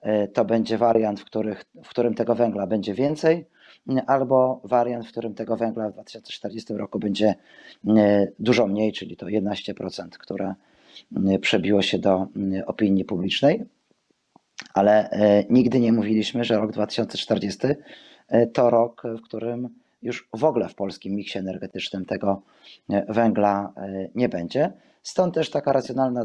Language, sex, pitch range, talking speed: Polish, male, 100-120 Hz, 130 wpm